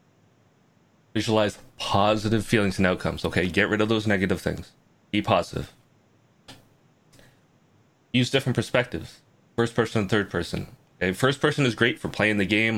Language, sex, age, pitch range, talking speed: English, male, 30-49, 95-115 Hz, 140 wpm